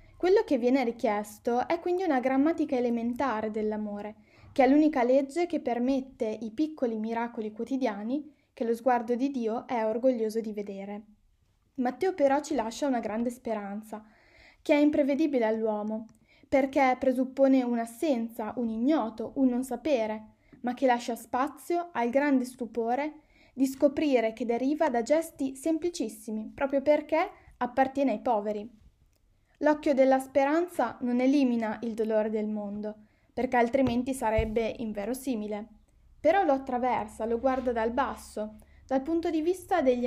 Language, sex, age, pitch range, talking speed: Italian, female, 20-39, 225-280 Hz, 140 wpm